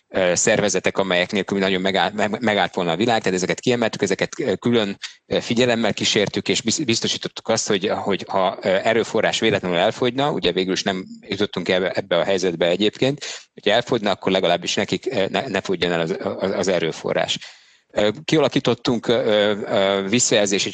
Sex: male